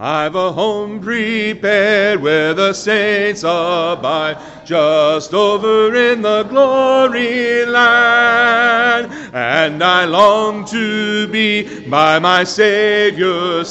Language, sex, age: English, male, 50-69